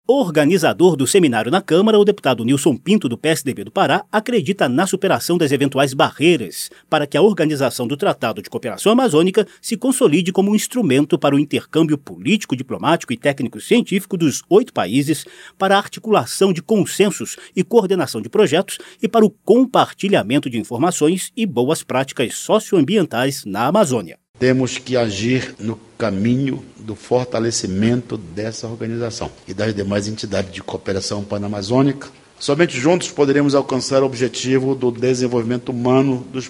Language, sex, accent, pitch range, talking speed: Portuguese, male, Brazilian, 115-155 Hz, 150 wpm